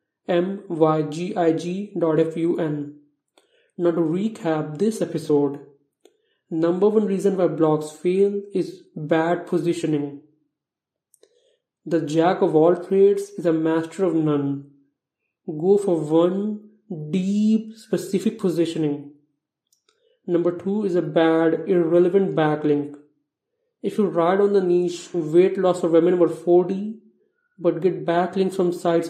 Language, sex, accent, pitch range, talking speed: English, male, Indian, 160-195 Hz, 115 wpm